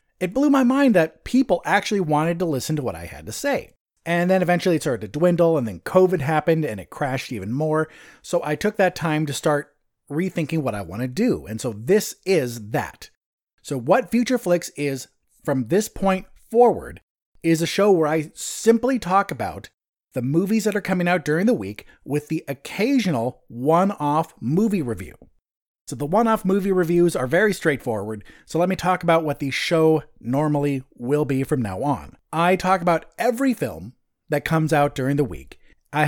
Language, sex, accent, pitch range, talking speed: English, male, American, 145-185 Hz, 195 wpm